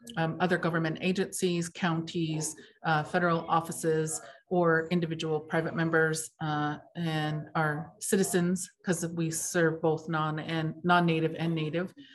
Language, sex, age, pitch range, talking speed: English, female, 40-59, 160-180 Hz, 125 wpm